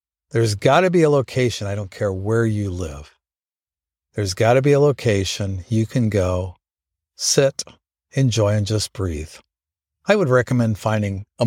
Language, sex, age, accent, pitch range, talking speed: English, male, 50-69, American, 90-130 Hz, 160 wpm